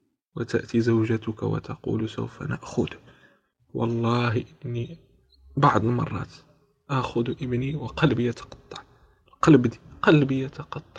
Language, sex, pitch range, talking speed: Arabic, male, 115-140 Hz, 85 wpm